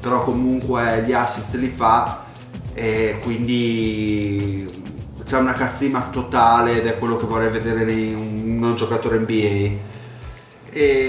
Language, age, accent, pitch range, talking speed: Italian, 30-49, native, 110-125 Hz, 130 wpm